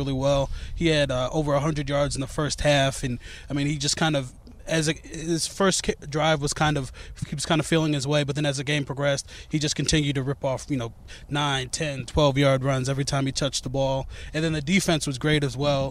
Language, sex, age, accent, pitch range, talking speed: English, male, 20-39, American, 135-155 Hz, 255 wpm